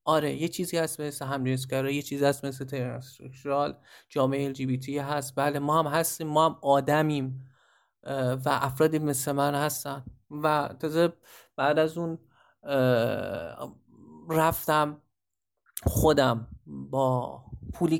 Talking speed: 120 wpm